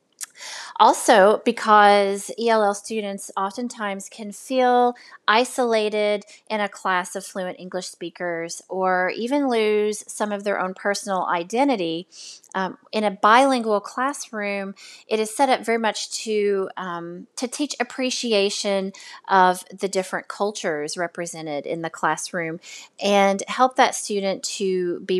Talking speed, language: 125 wpm, English